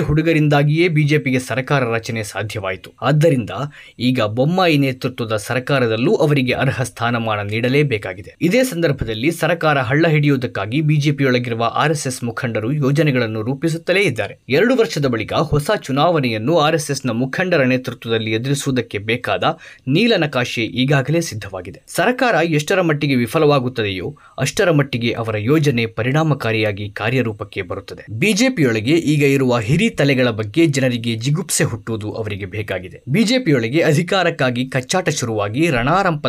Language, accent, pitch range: Kannada, native, 115-155 Hz